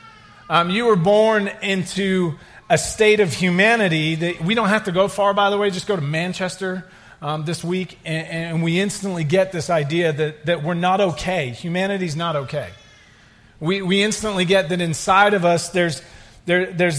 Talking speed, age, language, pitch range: 185 wpm, 40-59, English, 160-200 Hz